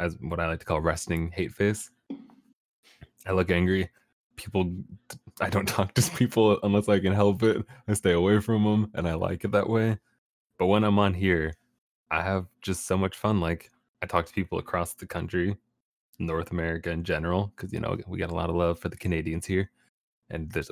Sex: male